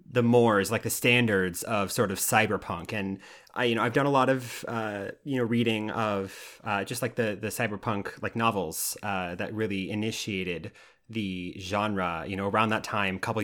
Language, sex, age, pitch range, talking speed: English, male, 30-49, 100-120 Hz, 195 wpm